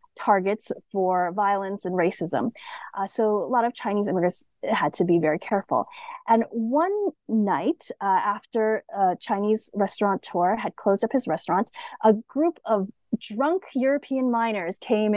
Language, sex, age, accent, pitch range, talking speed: English, female, 30-49, American, 205-260 Hz, 145 wpm